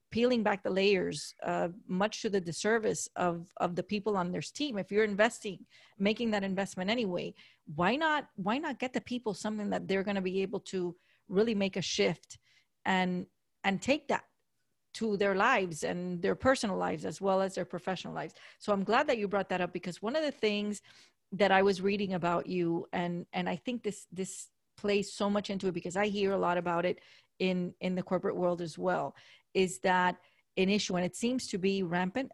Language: English